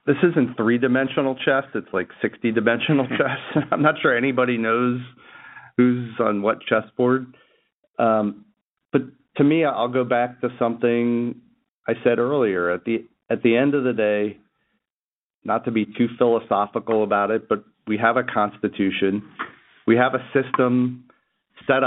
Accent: American